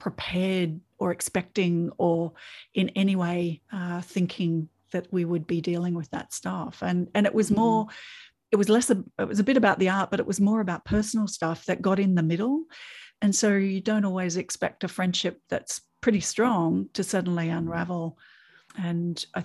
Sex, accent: female, Australian